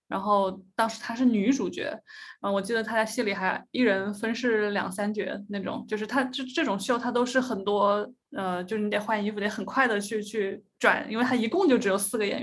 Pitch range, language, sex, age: 205-260 Hz, Chinese, female, 20-39